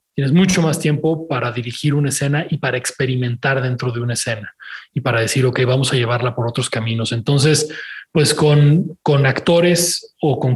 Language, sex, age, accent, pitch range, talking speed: Spanish, male, 30-49, Mexican, 125-150 Hz, 180 wpm